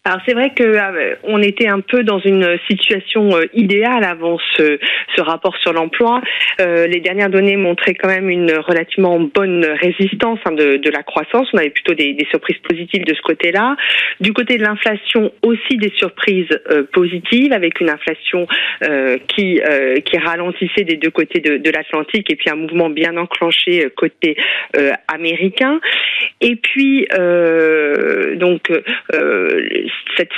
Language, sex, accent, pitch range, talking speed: French, female, French, 160-210 Hz, 160 wpm